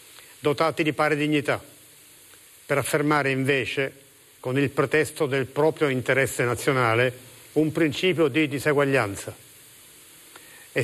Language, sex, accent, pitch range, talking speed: Italian, male, native, 135-155 Hz, 105 wpm